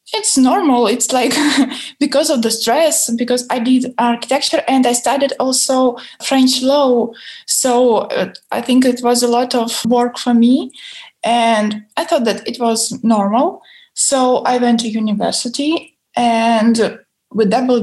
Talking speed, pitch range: 150 wpm, 235-290 Hz